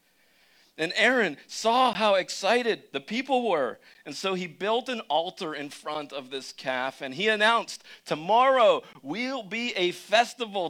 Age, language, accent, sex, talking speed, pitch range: 40-59, English, American, male, 150 wpm, 125-180 Hz